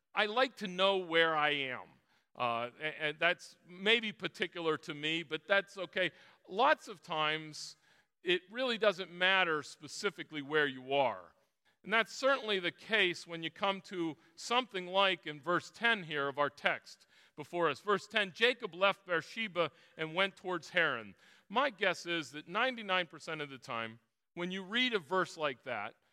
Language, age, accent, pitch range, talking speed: English, 40-59, American, 145-195 Hz, 165 wpm